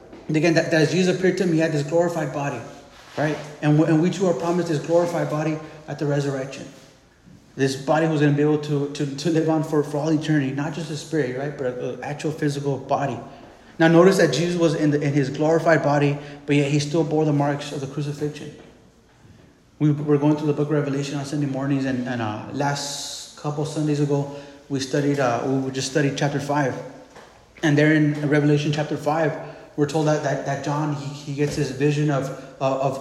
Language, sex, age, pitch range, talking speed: English, male, 30-49, 140-155 Hz, 215 wpm